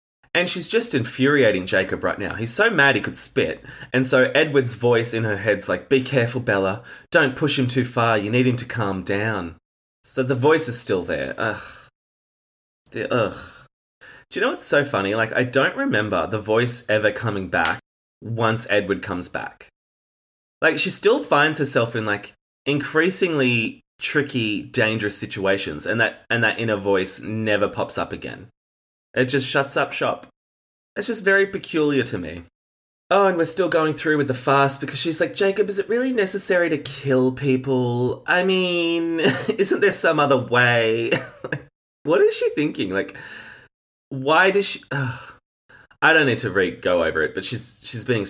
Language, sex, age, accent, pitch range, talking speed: English, male, 20-39, Australian, 105-165 Hz, 175 wpm